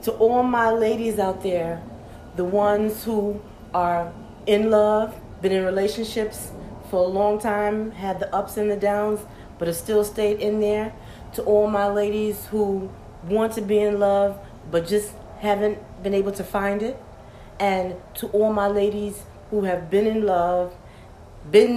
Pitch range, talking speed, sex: 175-210 Hz, 165 wpm, female